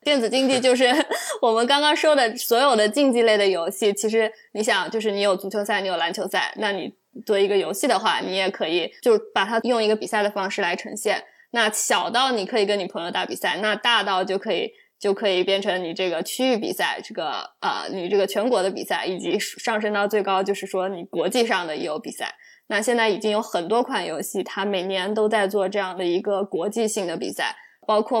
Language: Chinese